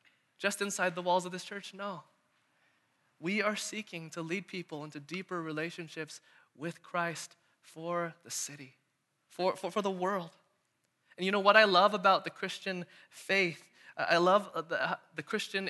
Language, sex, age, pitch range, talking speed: English, male, 20-39, 160-195 Hz, 160 wpm